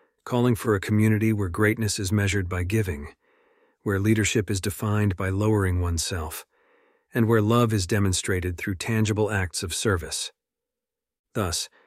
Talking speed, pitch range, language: 140 wpm, 95-110 Hz, English